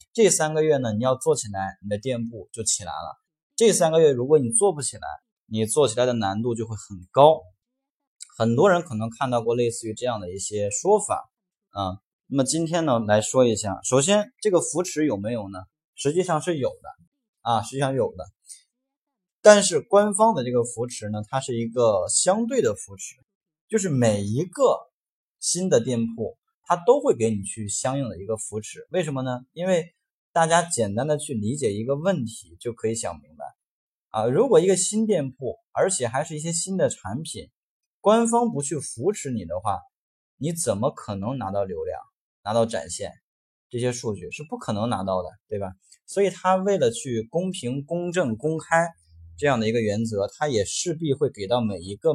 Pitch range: 110-180 Hz